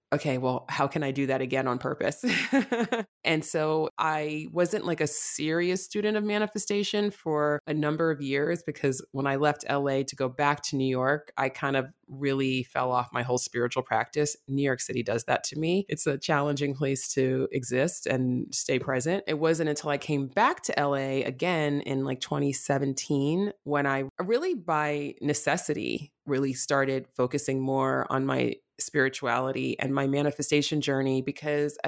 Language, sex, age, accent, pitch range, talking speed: English, female, 20-39, American, 135-155 Hz, 170 wpm